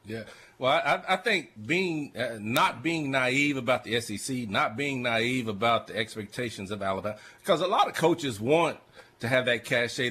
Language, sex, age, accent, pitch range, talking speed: English, male, 40-59, American, 105-135 Hz, 185 wpm